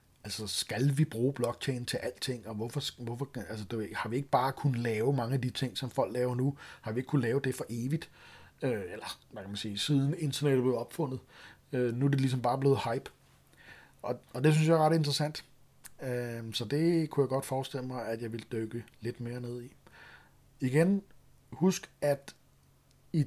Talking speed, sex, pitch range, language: 195 wpm, male, 120-145 Hz, Danish